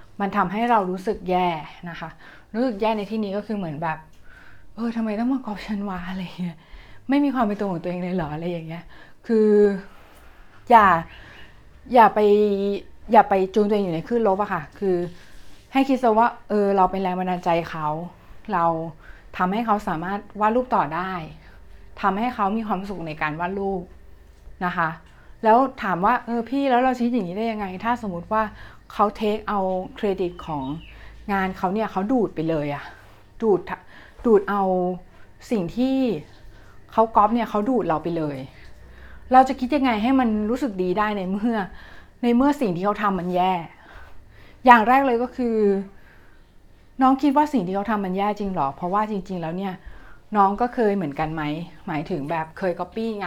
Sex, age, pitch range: female, 20-39, 175-220 Hz